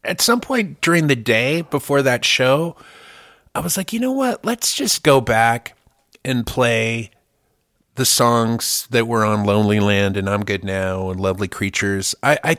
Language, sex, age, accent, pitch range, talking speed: English, male, 30-49, American, 95-130 Hz, 175 wpm